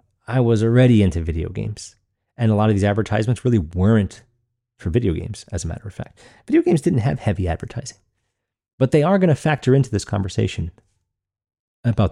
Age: 30-49